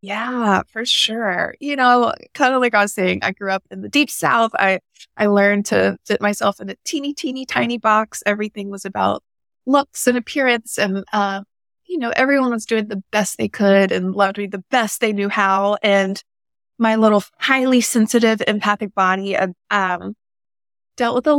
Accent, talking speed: American, 185 wpm